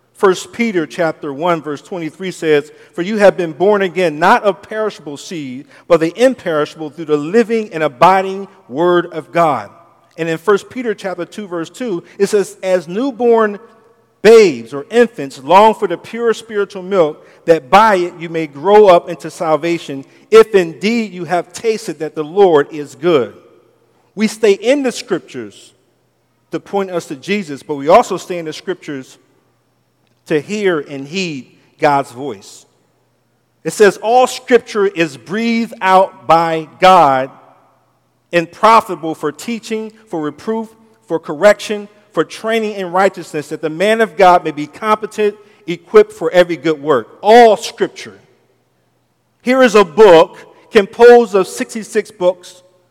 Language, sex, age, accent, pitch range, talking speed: English, male, 50-69, American, 160-215 Hz, 155 wpm